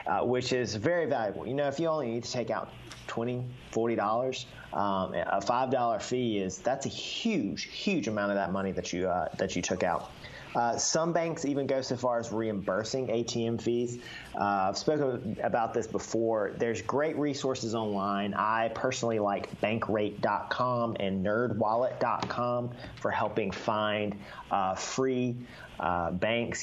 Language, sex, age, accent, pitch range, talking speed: English, male, 30-49, American, 100-125 Hz, 160 wpm